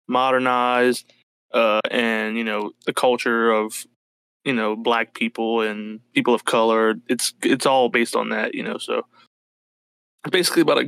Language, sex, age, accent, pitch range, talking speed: English, male, 20-39, American, 115-140 Hz, 155 wpm